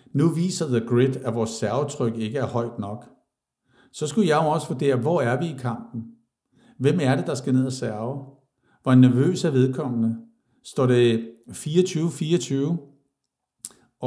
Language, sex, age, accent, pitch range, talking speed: Danish, male, 60-79, native, 120-145 Hz, 160 wpm